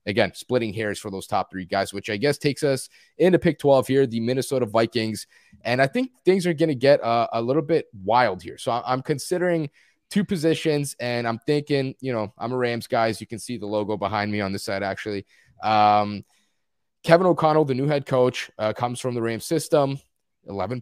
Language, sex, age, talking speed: English, male, 20-39, 210 wpm